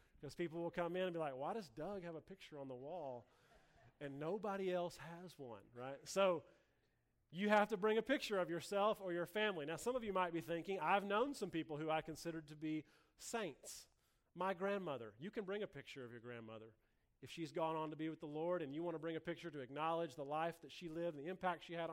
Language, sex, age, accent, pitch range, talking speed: English, male, 30-49, American, 155-200 Hz, 245 wpm